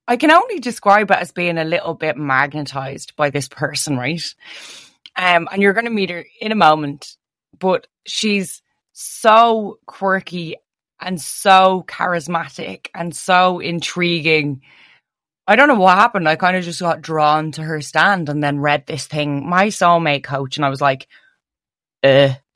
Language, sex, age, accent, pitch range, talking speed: English, female, 20-39, Irish, 145-190 Hz, 165 wpm